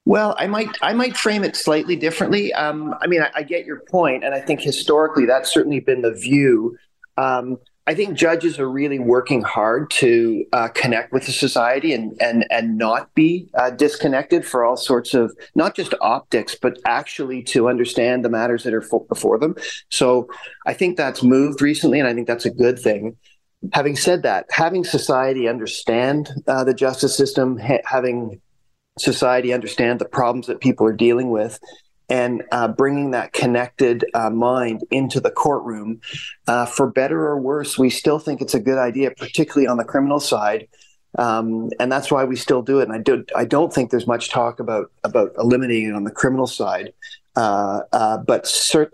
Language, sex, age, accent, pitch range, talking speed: English, male, 40-59, American, 120-150 Hz, 190 wpm